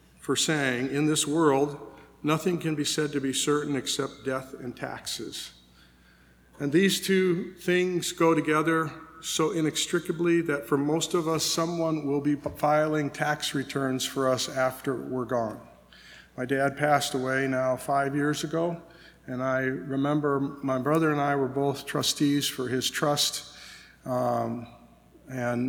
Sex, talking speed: male, 145 wpm